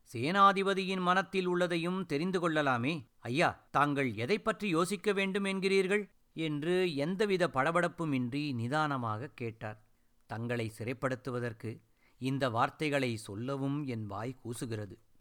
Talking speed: 95 wpm